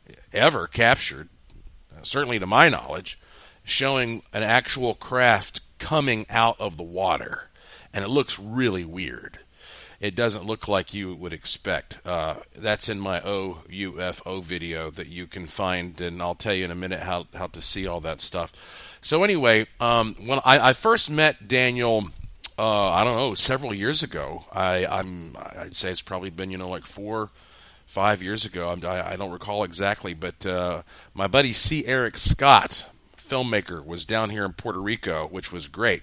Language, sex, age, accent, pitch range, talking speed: English, male, 40-59, American, 90-115 Hz, 175 wpm